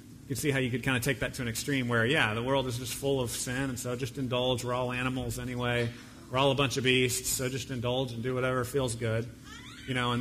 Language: English